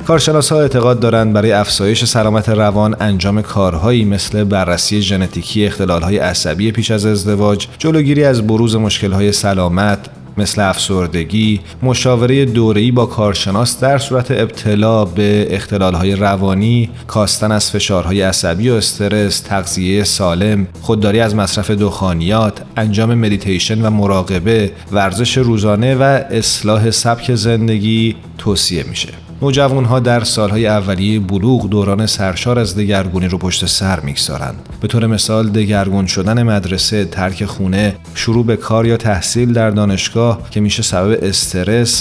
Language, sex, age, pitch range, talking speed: Persian, male, 30-49, 95-115 Hz, 130 wpm